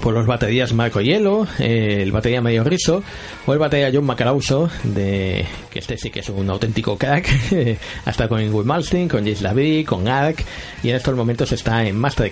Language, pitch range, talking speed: Spanish, 115-145 Hz, 195 wpm